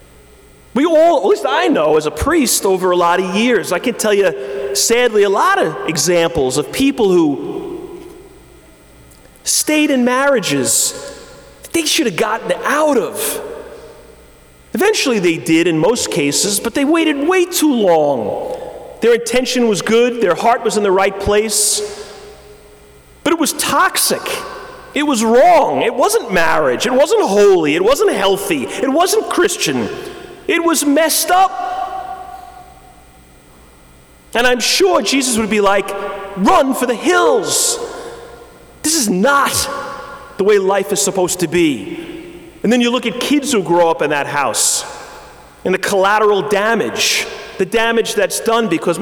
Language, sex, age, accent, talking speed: English, male, 30-49, American, 150 wpm